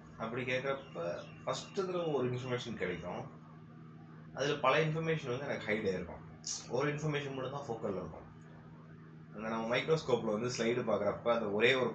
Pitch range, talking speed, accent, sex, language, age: 80-120 Hz, 140 wpm, native, male, Tamil, 20-39